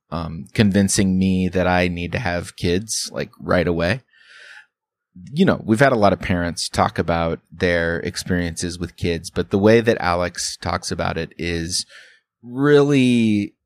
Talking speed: 160 wpm